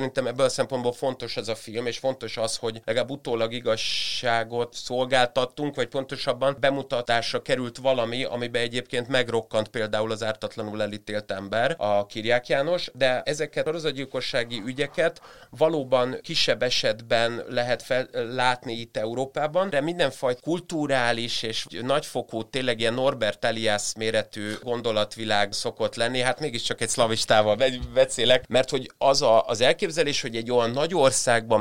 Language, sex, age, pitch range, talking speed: Hungarian, male, 30-49, 110-130 Hz, 140 wpm